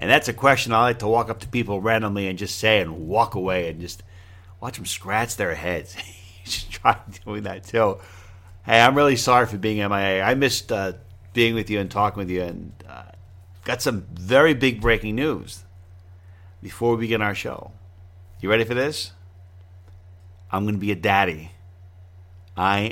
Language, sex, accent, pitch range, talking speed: English, male, American, 90-115 Hz, 185 wpm